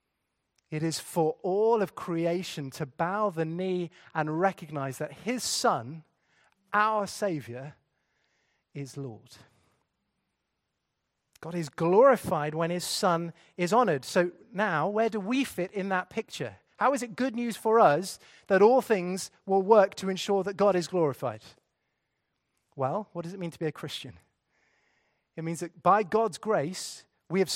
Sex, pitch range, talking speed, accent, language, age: male, 165-230 Hz, 155 wpm, British, English, 30-49